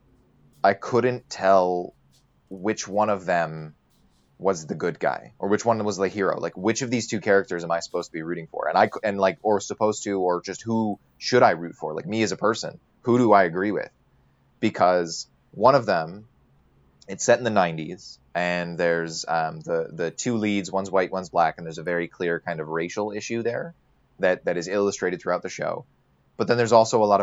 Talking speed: 215 wpm